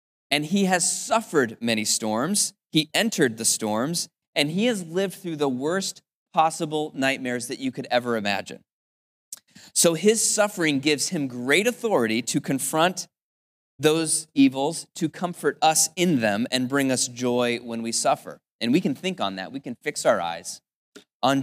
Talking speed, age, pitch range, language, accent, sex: 165 wpm, 30-49, 120-170 Hz, English, American, male